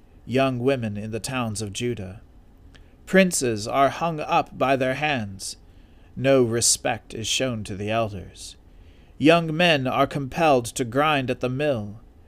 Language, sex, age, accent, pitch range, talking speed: English, male, 40-59, American, 90-135 Hz, 145 wpm